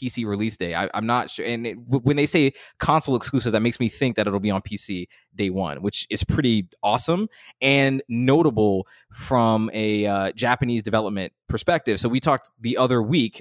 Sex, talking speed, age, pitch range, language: male, 185 wpm, 20-39, 105-125 Hz, English